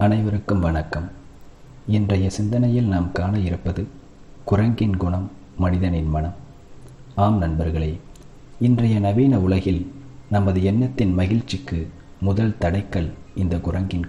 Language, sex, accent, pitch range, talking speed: Tamil, male, native, 90-120 Hz, 100 wpm